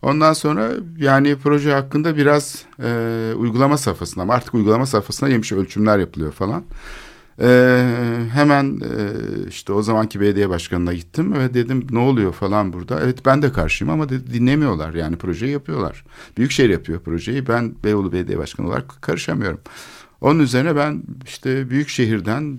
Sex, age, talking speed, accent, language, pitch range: male, 50-69, 150 wpm, native, Turkish, 100-130 Hz